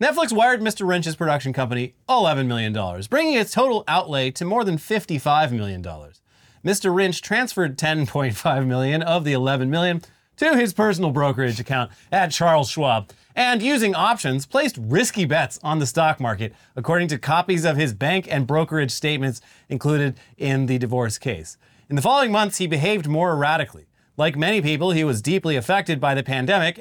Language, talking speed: English, 170 wpm